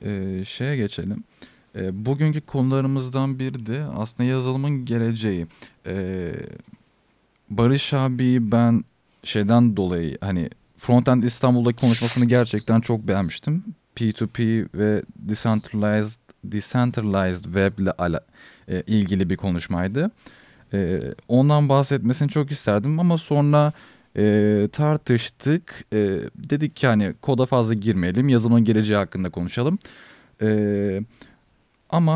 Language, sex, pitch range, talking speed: Turkish, male, 105-135 Hz, 105 wpm